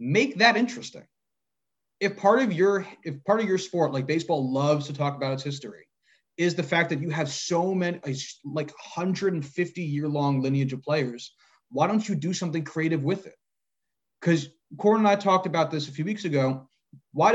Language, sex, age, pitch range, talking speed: English, male, 30-49, 145-190 Hz, 185 wpm